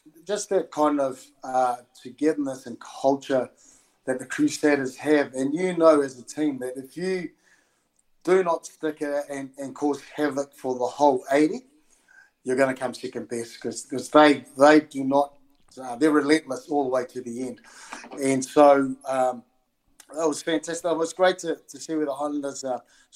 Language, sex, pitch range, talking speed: English, male, 130-160 Hz, 180 wpm